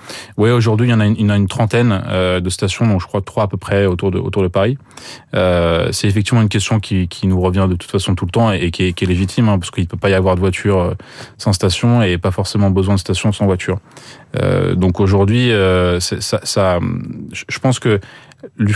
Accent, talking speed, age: French, 235 wpm, 20-39